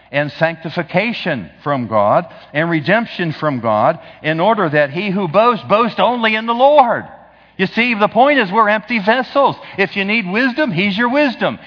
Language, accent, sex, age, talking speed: English, American, male, 50-69, 175 wpm